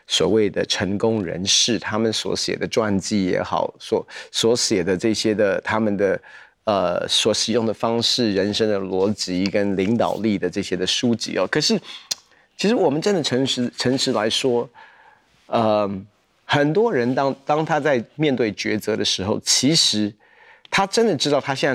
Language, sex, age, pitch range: Chinese, male, 30-49, 105-150 Hz